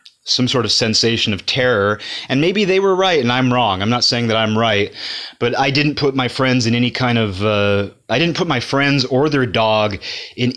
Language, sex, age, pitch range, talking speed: English, male, 30-49, 110-130 Hz, 225 wpm